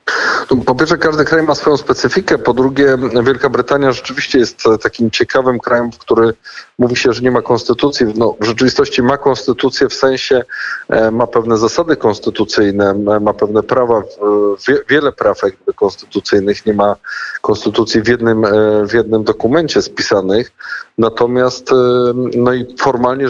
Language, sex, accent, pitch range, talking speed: Polish, male, native, 110-125 Hz, 135 wpm